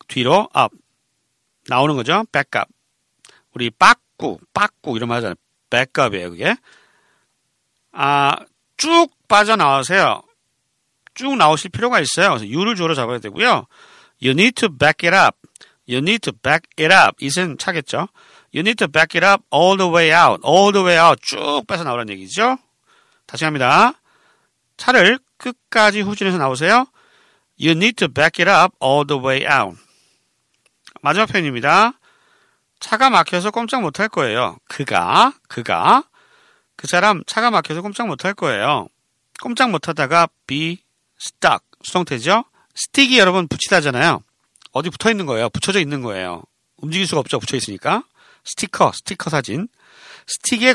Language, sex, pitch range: Korean, male, 150-235 Hz